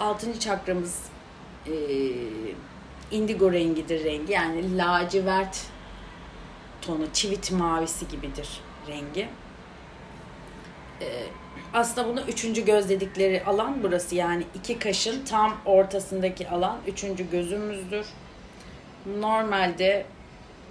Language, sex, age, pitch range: Turkish, female, 30-49, 175-215 Hz